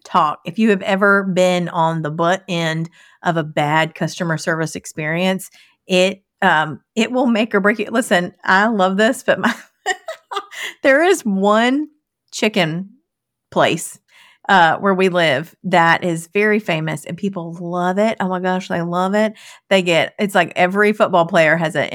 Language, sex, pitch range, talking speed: English, female, 165-200 Hz, 170 wpm